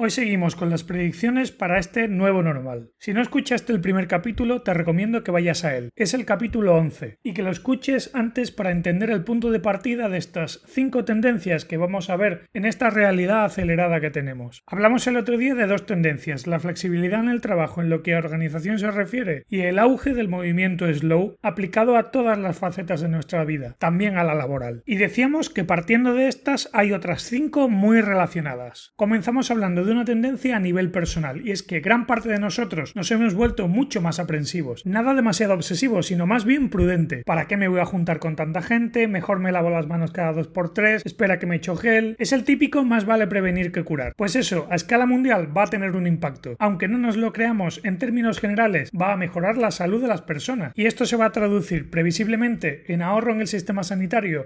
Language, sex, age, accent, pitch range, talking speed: Spanish, male, 30-49, Spanish, 175-230 Hz, 215 wpm